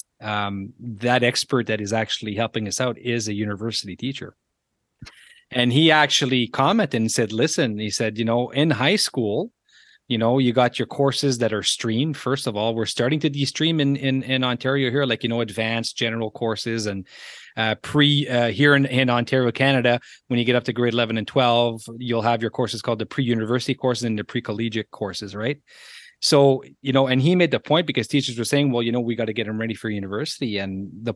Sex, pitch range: male, 115-140 Hz